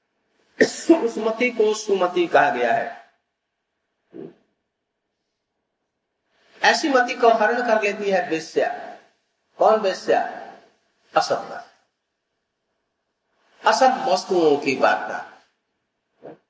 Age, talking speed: 50-69, 80 wpm